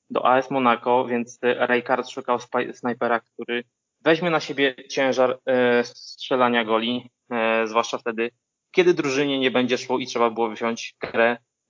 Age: 20-39